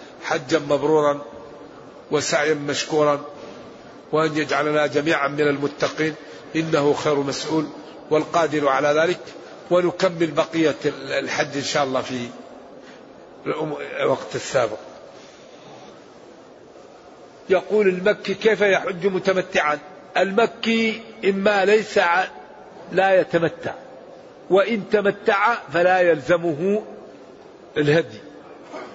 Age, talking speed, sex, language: 50-69, 80 wpm, male, Arabic